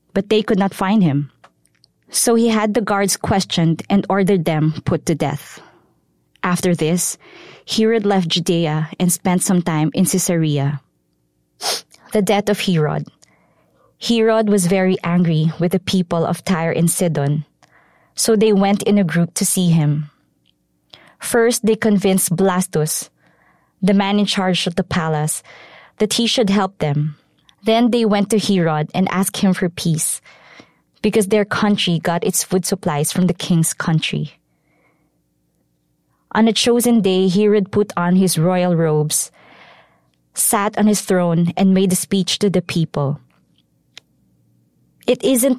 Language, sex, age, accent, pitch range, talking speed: English, female, 20-39, Filipino, 155-205 Hz, 150 wpm